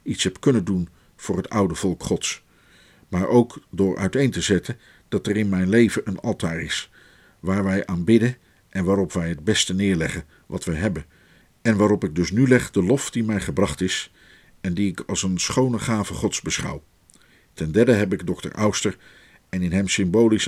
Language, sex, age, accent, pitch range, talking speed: Dutch, male, 50-69, Dutch, 90-105 Hz, 195 wpm